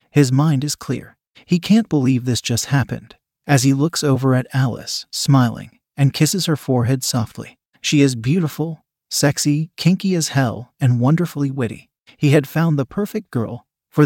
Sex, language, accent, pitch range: male, English, American, 125-160 Hz